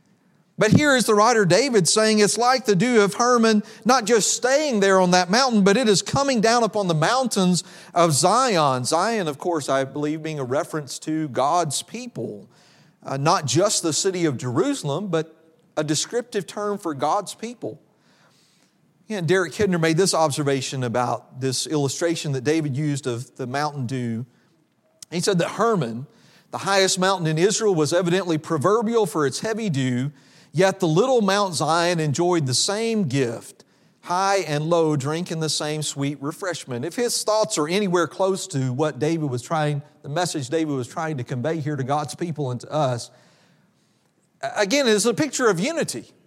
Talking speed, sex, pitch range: 175 wpm, male, 150-210 Hz